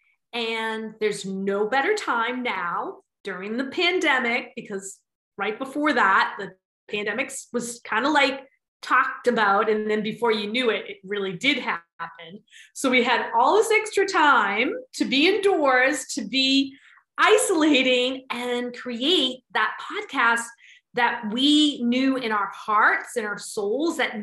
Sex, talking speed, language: female, 145 wpm, English